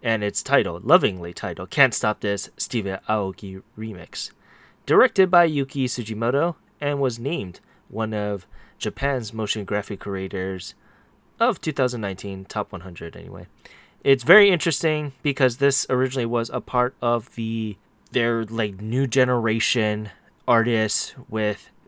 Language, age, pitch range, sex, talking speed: English, 20-39, 105-135 Hz, male, 125 wpm